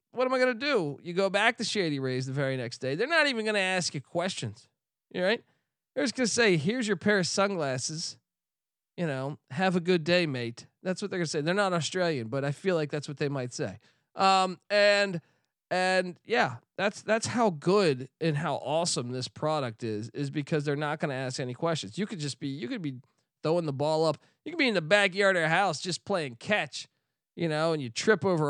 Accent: American